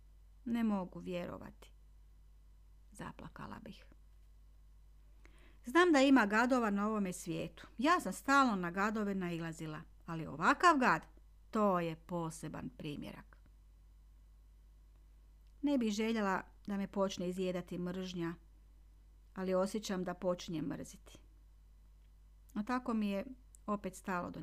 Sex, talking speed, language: female, 110 wpm, Croatian